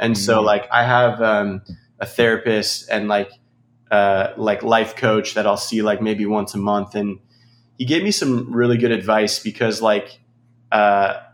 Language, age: English, 20-39